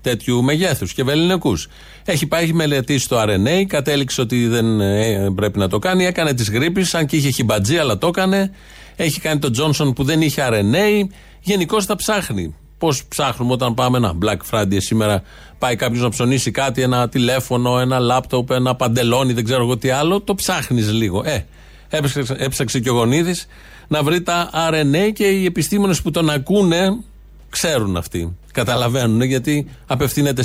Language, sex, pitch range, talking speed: Greek, male, 110-150 Hz, 165 wpm